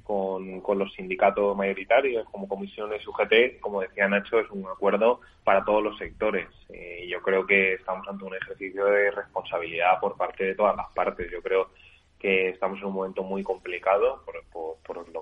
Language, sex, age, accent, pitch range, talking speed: Spanish, male, 20-39, Spanish, 95-125 Hz, 180 wpm